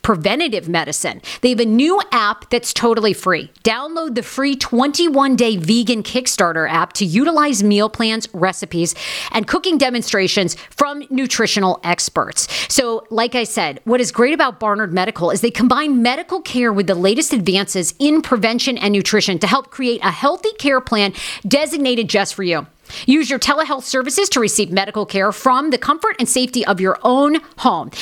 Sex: female